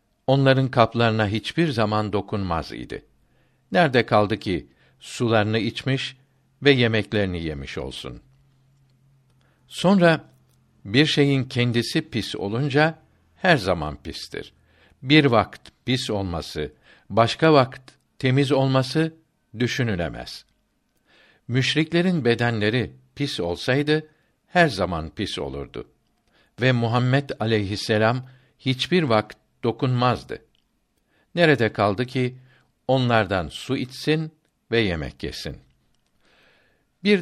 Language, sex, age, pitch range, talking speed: Turkish, male, 60-79, 105-140 Hz, 90 wpm